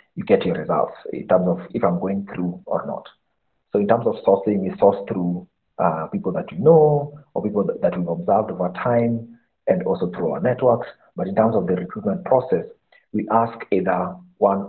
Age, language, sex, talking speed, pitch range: 50-69, English, male, 205 wpm, 95-135 Hz